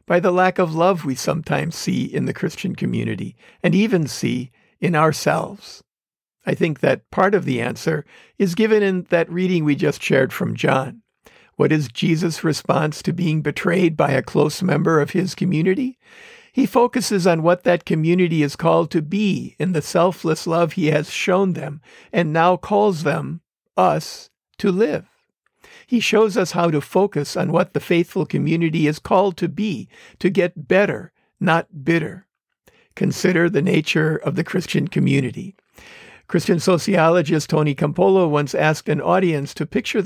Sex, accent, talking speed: male, American, 165 wpm